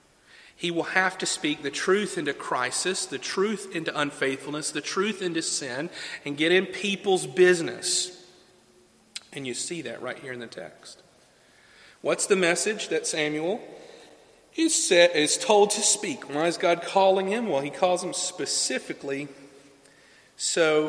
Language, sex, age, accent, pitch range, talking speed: English, male, 40-59, American, 130-185 Hz, 145 wpm